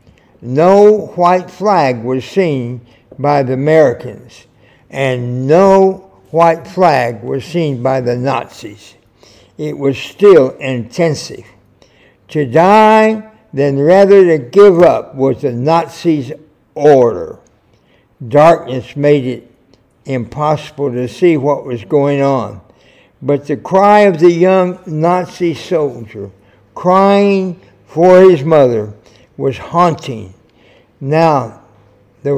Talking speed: 110 wpm